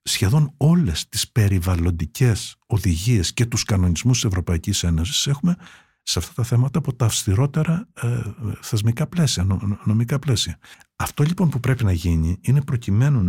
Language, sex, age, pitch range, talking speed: Greek, male, 50-69, 100-135 Hz, 140 wpm